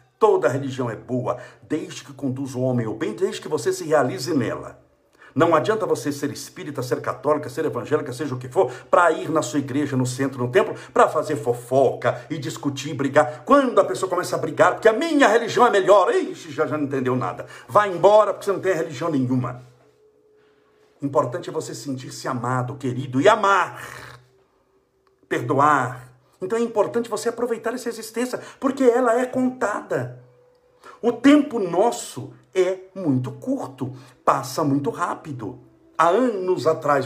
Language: Portuguese